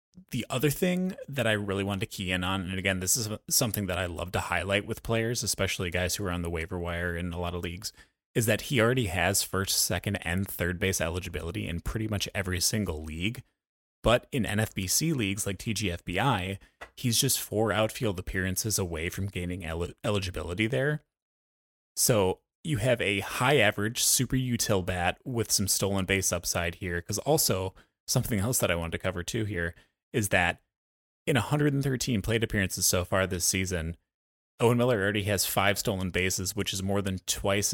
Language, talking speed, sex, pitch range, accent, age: English, 185 wpm, male, 90-110 Hz, American, 20-39